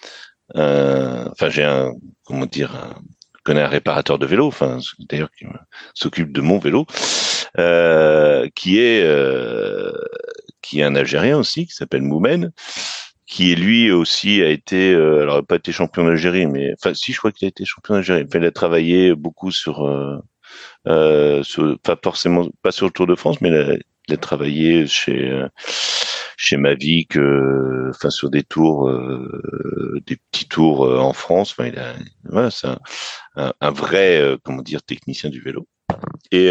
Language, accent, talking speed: French, French, 175 wpm